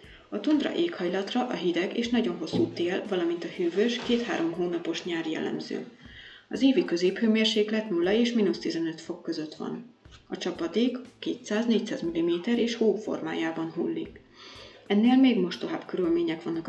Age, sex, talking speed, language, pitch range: 30-49, female, 135 wpm, Hungarian, 175-235 Hz